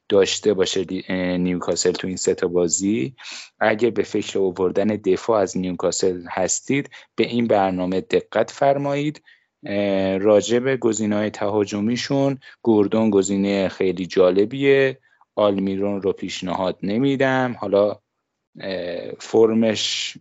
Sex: male